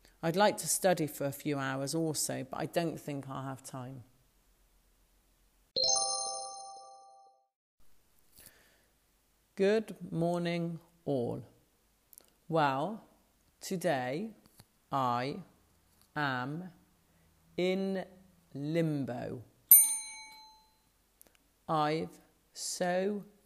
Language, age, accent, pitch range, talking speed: English, 40-59, British, 135-165 Hz, 70 wpm